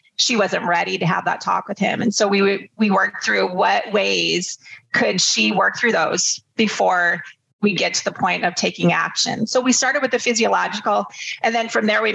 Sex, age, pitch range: female, 30-49, 185-230 Hz